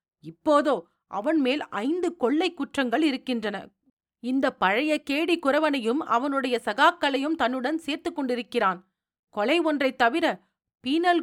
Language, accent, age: Tamil, native, 40-59